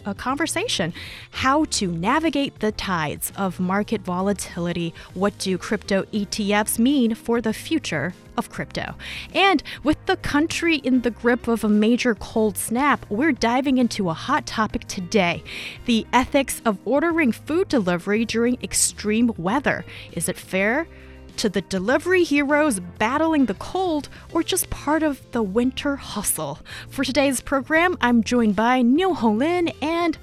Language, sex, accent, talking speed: English, female, American, 145 wpm